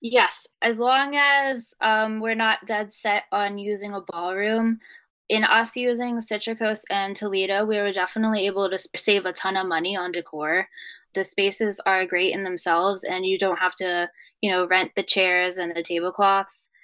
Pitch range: 190-225 Hz